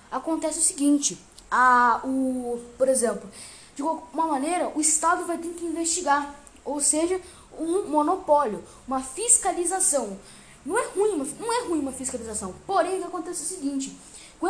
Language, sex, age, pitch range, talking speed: Portuguese, female, 10-29, 275-345 Hz, 130 wpm